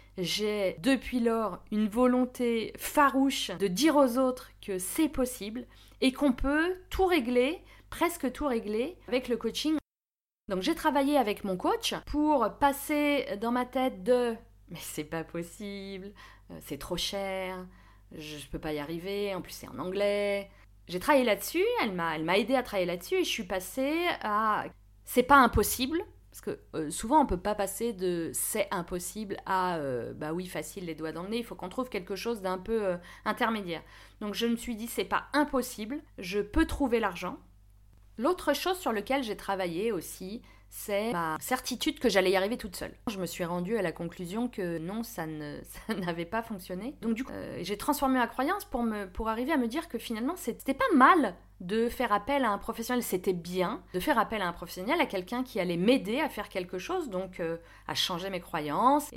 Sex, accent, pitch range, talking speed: female, French, 185-260 Hz, 205 wpm